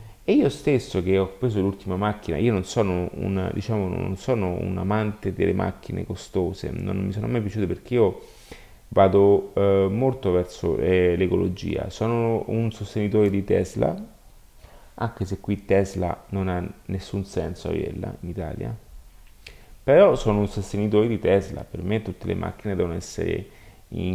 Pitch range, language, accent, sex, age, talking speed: 90-105 Hz, Italian, native, male, 30-49, 155 wpm